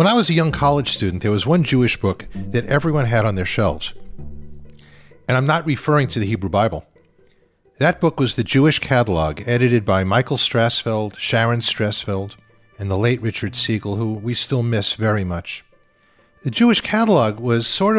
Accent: American